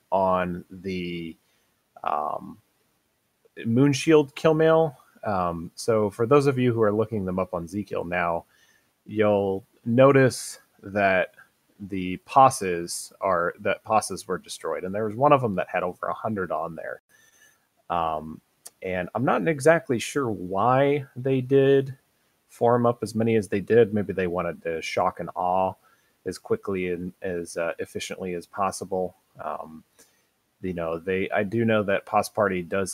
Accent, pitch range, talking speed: American, 90-125 Hz, 155 wpm